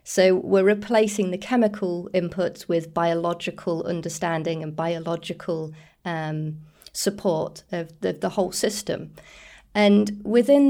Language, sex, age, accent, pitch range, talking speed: English, female, 30-49, British, 175-205 Hz, 110 wpm